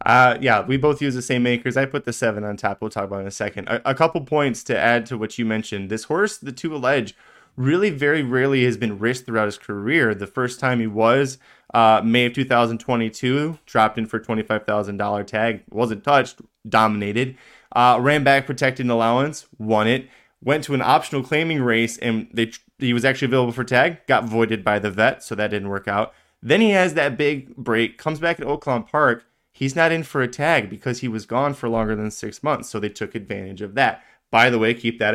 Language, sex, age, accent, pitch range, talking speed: English, male, 20-39, American, 110-135 Hz, 225 wpm